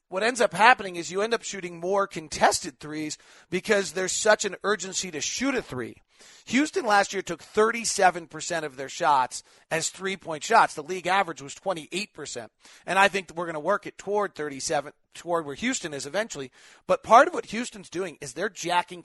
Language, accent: English, American